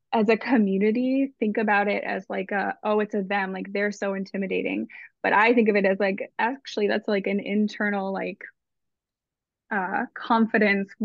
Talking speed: 175 wpm